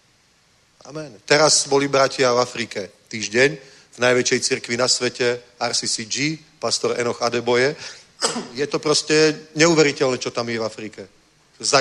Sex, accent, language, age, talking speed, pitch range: male, native, Czech, 40-59, 130 wpm, 125-155 Hz